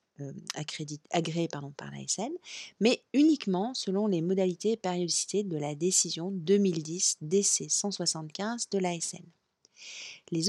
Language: French